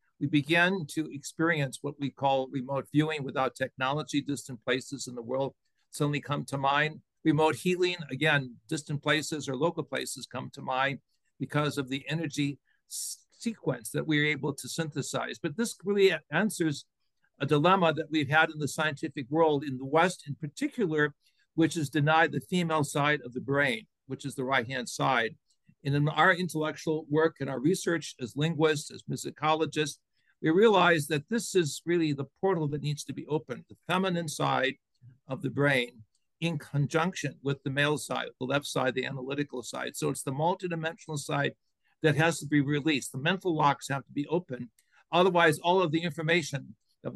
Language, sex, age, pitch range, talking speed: English, male, 60-79, 135-160 Hz, 180 wpm